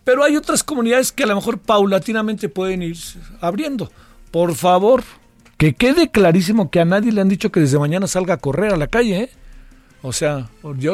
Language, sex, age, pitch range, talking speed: Spanish, male, 50-69, 155-205 Hz, 190 wpm